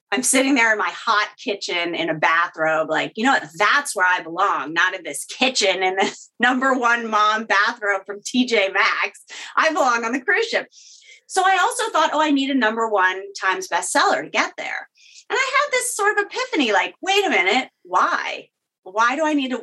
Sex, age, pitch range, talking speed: female, 30-49, 210-295 Hz, 210 wpm